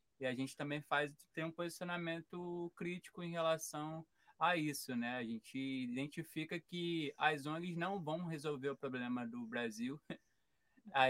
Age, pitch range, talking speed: 20-39, 135-165 Hz, 150 wpm